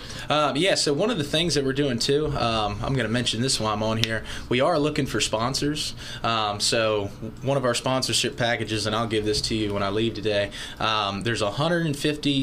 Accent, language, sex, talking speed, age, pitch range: American, English, male, 220 wpm, 20-39, 105-125 Hz